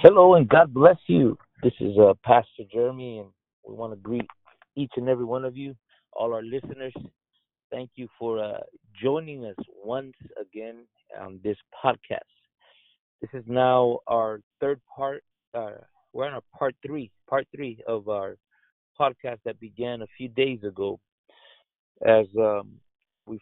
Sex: male